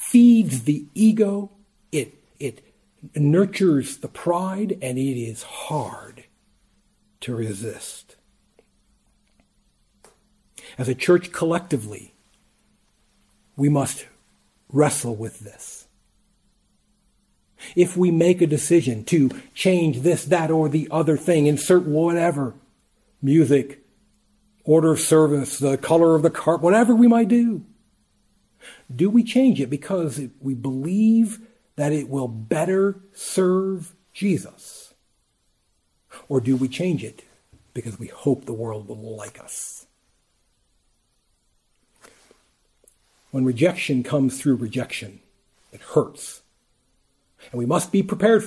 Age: 50-69